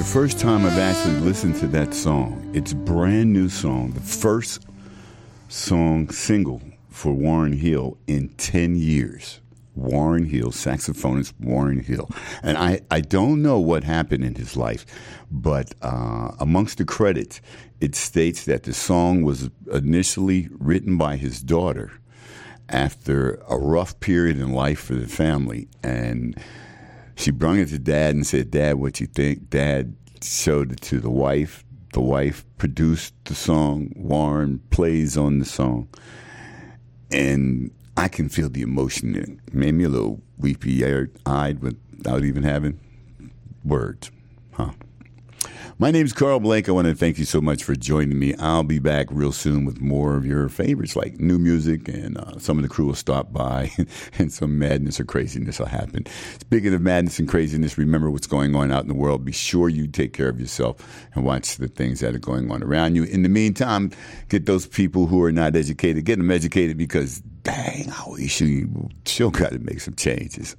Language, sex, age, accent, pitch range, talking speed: English, male, 60-79, American, 70-90 Hz, 180 wpm